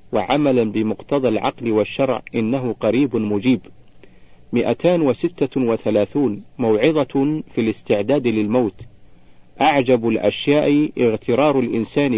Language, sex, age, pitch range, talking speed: Arabic, male, 50-69, 80-135 Hz, 80 wpm